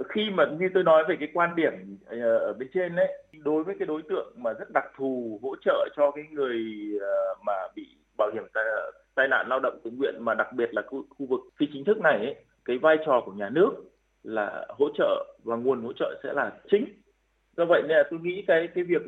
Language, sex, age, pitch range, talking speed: Vietnamese, male, 20-39, 150-205 Hz, 235 wpm